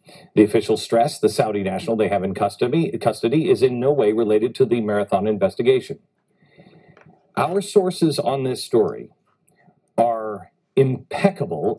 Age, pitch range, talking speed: 50-69, 130-185 Hz, 140 wpm